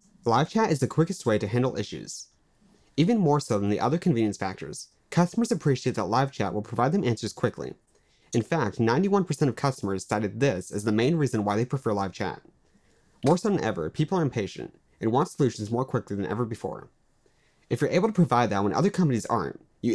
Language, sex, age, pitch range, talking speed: English, male, 30-49, 105-155 Hz, 210 wpm